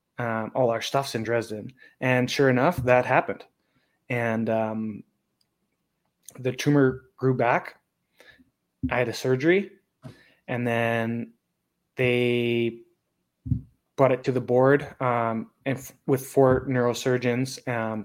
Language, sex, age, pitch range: English, male, 20-39, 115-135 Hz